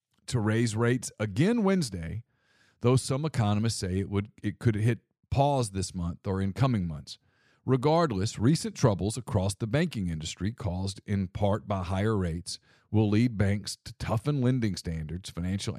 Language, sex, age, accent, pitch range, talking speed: English, male, 40-59, American, 90-115 Hz, 160 wpm